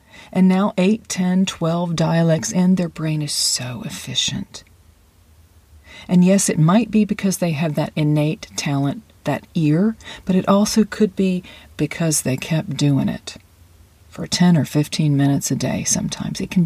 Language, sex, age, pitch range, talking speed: English, female, 40-59, 125-190 Hz, 160 wpm